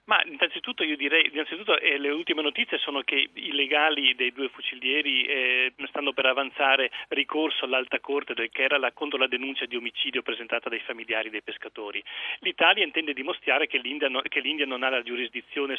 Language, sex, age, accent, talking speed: Italian, male, 40-59, native, 185 wpm